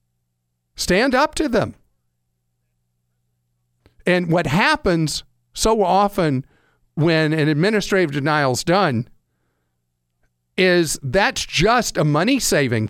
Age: 50-69